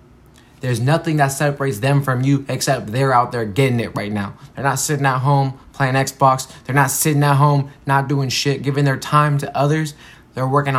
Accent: American